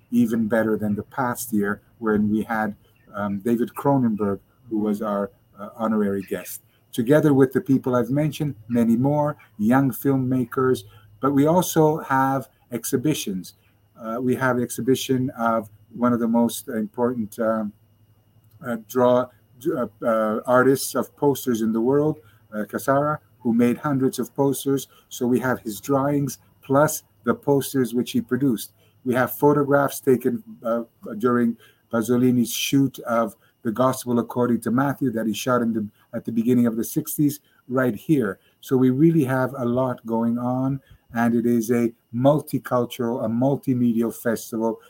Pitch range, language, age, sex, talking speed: 110-130 Hz, French, 50-69, male, 150 wpm